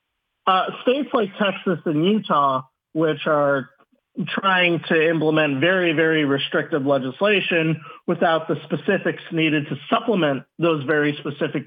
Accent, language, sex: American, English, male